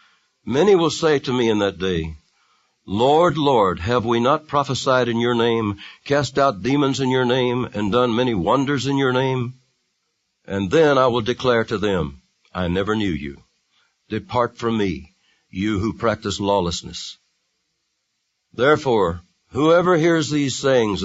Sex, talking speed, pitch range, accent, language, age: male, 150 wpm, 95-135 Hz, American, English, 60-79